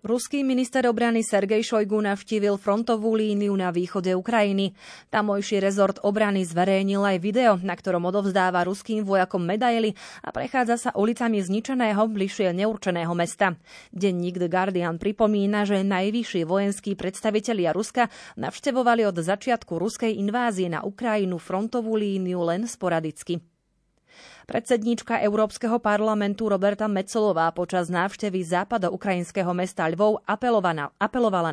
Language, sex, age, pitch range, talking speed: Slovak, female, 30-49, 185-220 Hz, 120 wpm